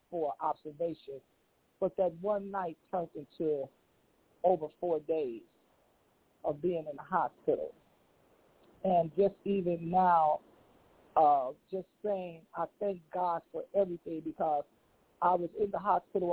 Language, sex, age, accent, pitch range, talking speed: English, male, 40-59, American, 160-195 Hz, 125 wpm